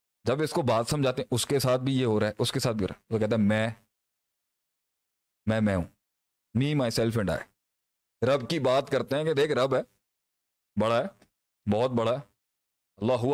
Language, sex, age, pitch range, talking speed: Urdu, male, 40-59, 105-150 Hz, 210 wpm